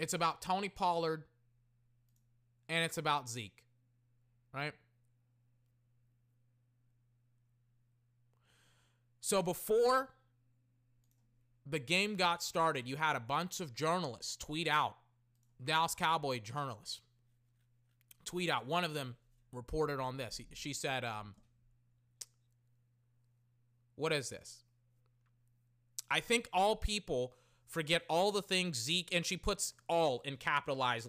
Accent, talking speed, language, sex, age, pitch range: American, 105 wpm, English, male, 30-49, 120-165 Hz